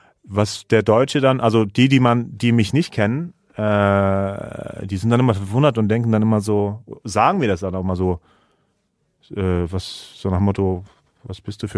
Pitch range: 95-110 Hz